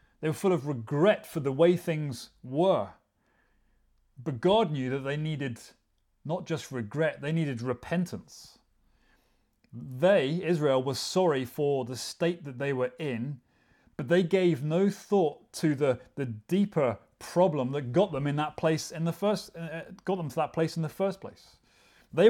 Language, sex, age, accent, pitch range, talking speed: English, male, 30-49, British, 125-170 Hz, 165 wpm